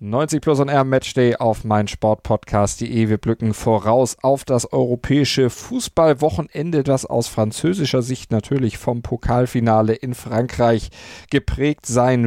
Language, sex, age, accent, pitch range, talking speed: German, male, 40-59, German, 115-135 Hz, 120 wpm